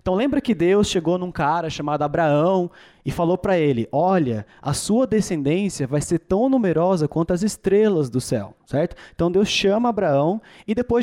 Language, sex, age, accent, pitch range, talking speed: Portuguese, male, 20-39, Brazilian, 150-205 Hz, 180 wpm